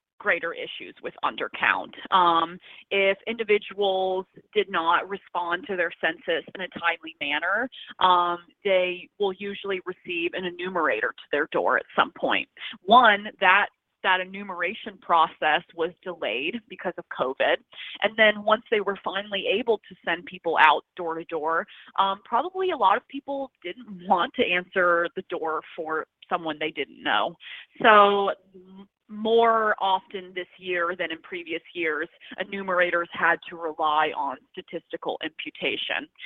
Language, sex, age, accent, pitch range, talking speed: English, female, 30-49, American, 175-210 Hz, 145 wpm